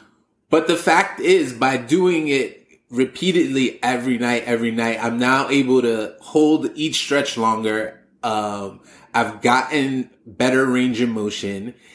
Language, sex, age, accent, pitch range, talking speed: English, male, 20-39, American, 115-145 Hz, 135 wpm